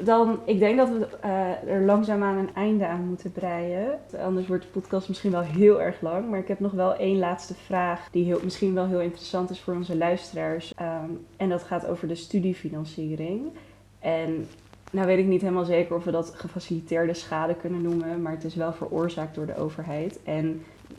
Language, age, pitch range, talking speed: Dutch, 20-39, 165-190 Hz, 205 wpm